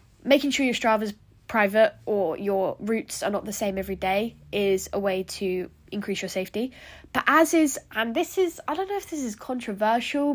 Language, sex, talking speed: English, female, 195 wpm